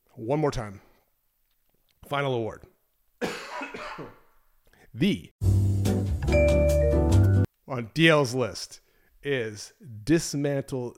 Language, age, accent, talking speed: English, 30-49, American, 60 wpm